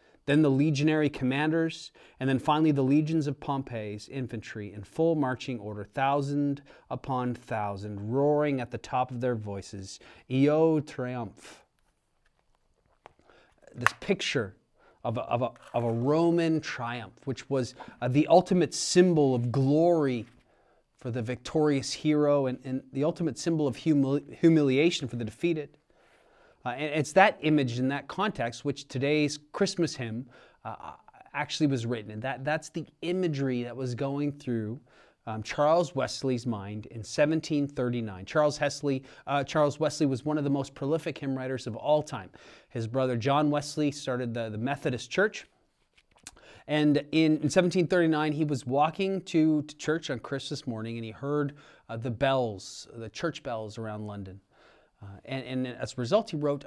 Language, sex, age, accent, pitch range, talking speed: English, male, 30-49, American, 120-150 Hz, 150 wpm